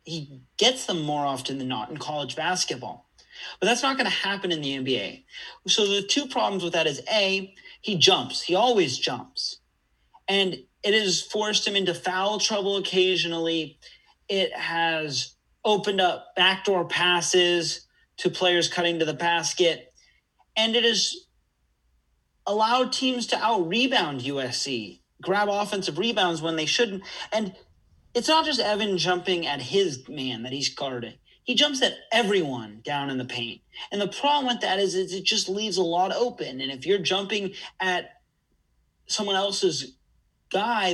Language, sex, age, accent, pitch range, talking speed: English, male, 30-49, American, 145-205 Hz, 160 wpm